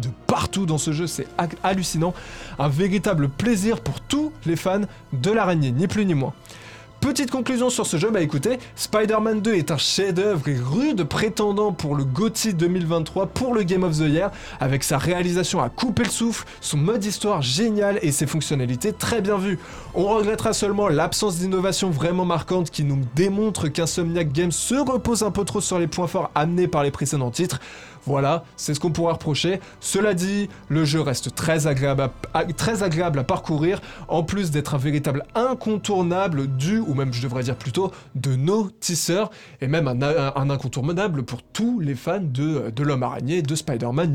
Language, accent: French, French